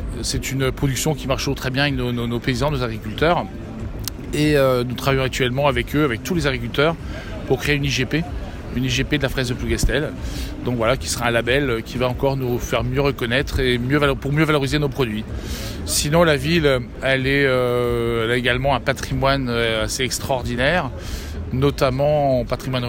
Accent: French